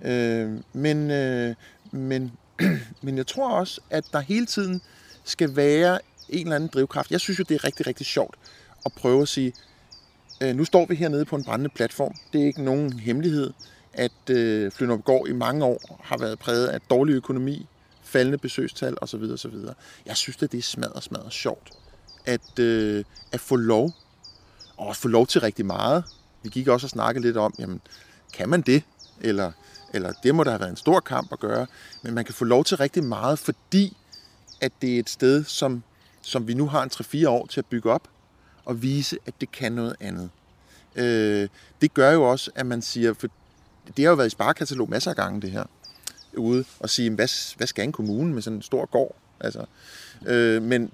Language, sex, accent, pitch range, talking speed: Danish, male, native, 115-145 Hz, 195 wpm